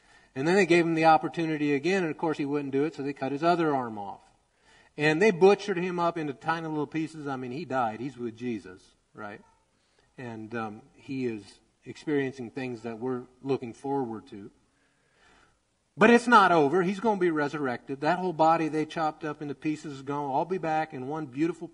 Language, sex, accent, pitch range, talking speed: English, male, American, 130-175 Hz, 210 wpm